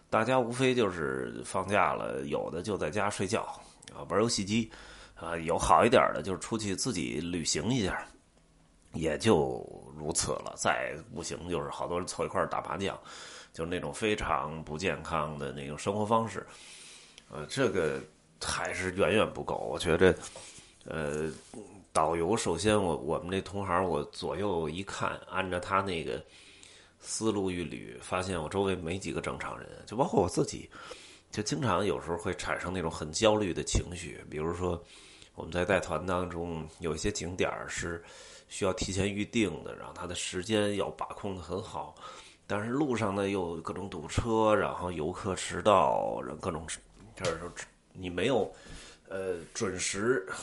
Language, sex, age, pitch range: Chinese, male, 30-49, 80-105 Hz